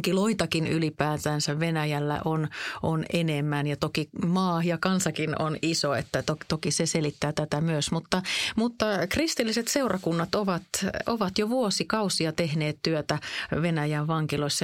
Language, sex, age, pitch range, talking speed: Finnish, female, 30-49, 150-190 Hz, 130 wpm